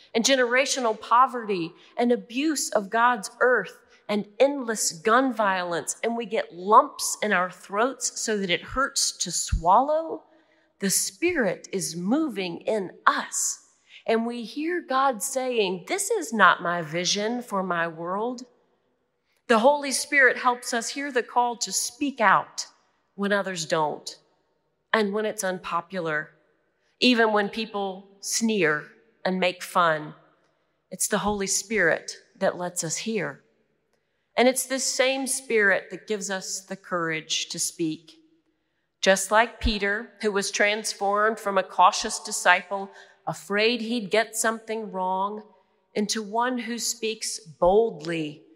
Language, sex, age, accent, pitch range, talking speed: English, female, 40-59, American, 180-240 Hz, 135 wpm